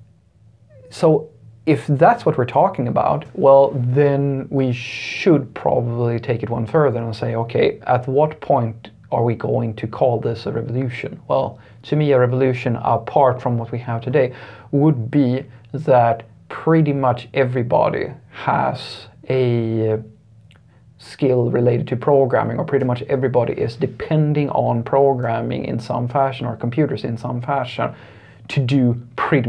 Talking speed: 145 wpm